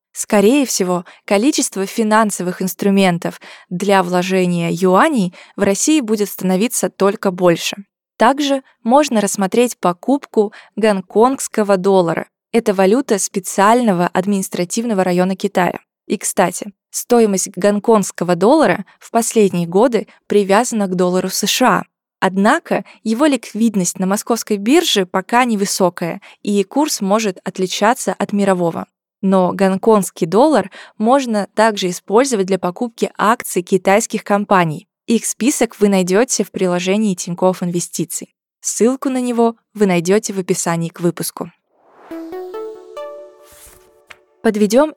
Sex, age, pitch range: female, 20-39, 185-230 Hz